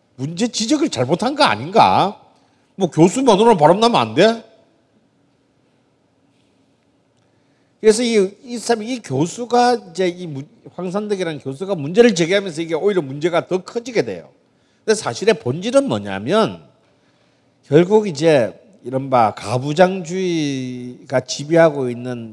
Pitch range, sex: 125-190 Hz, male